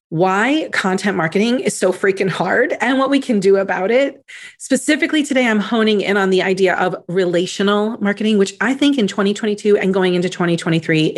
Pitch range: 180-250 Hz